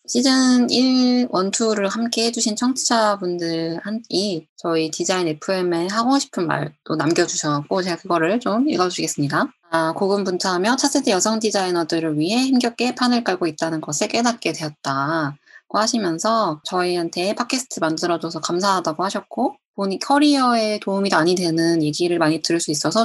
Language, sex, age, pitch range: Korean, female, 20-39, 165-215 Hz